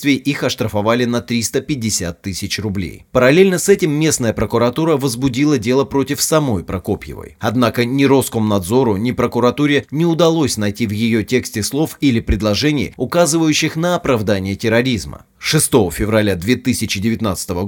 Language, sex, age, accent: Russian, male, 30-49, native